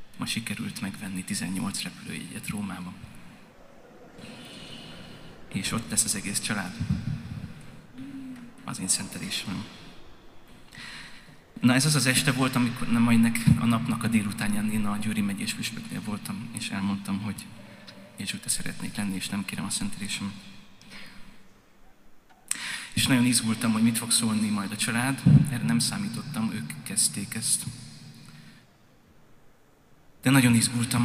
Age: 30-49